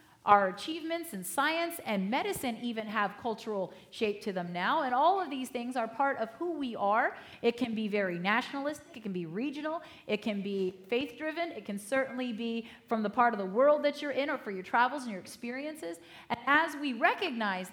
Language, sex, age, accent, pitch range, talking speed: English, female, 30-49, American, 230-310 Hz, 205 wpm